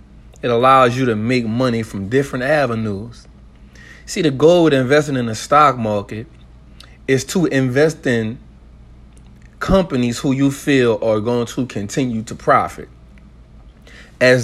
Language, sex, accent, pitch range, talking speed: English, male, American, 105-135 Hz, 135 wpm